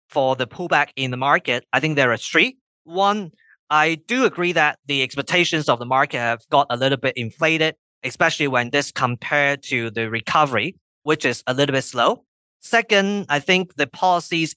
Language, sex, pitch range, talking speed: English, male, 130-170 Hz, 185 wpm